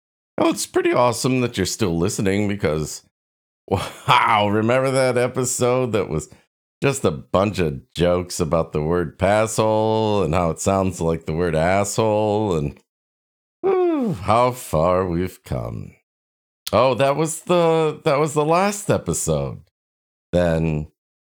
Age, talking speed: 50-69, 135 wpm